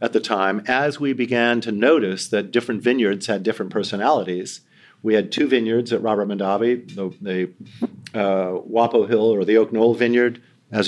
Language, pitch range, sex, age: English, 105-125 Hz, male, 50-69